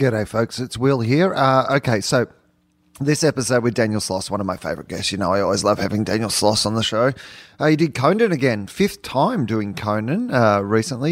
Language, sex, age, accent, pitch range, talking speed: English, male, 30-49, Australian, 100-120 Hz, 215 wpm